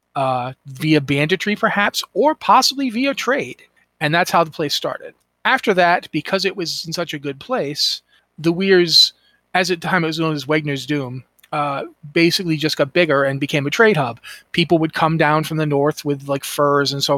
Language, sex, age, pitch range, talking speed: English, male, 30-49, 145-170 Hz, 205 wpm